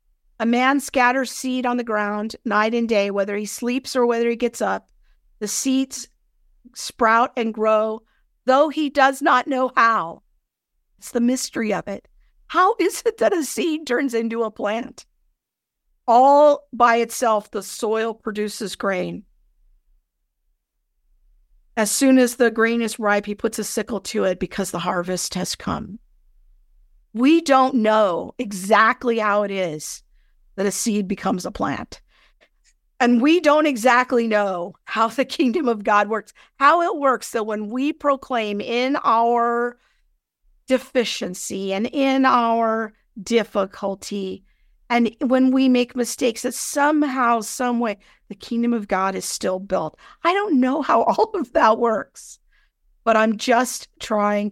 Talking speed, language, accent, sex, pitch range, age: 150 wpm, English, American, female, 205-255 Hz, 50-69